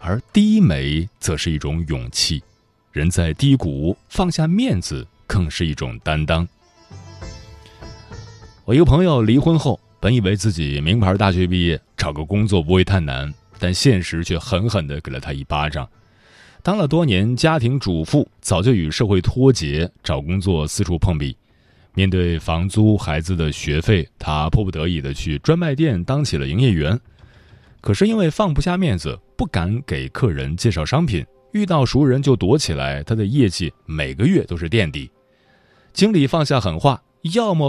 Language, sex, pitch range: Chinese, male, 85-135 Hz